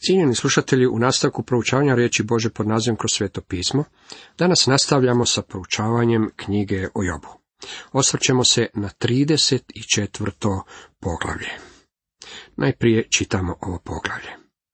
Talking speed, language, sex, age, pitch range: 115 wpm, Croatian, male, 50-69, 105-135 Hz